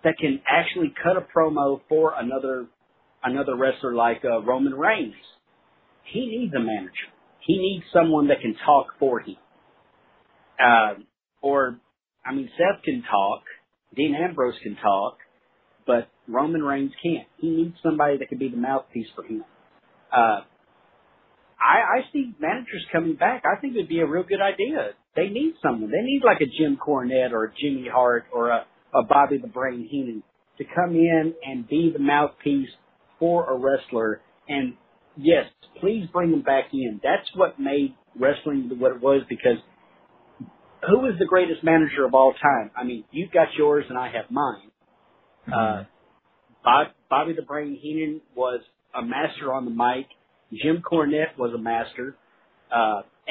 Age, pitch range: 40-59, 130-165 Hz